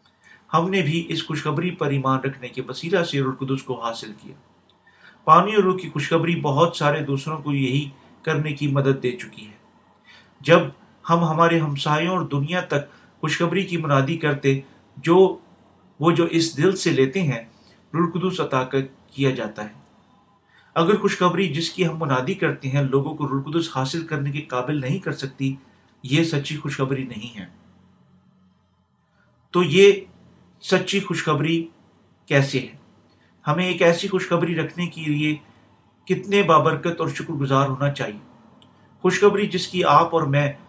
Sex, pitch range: male, 135-170 Hz